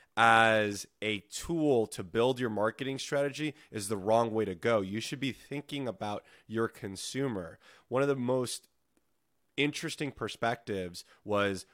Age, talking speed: 20-39, 145 wpm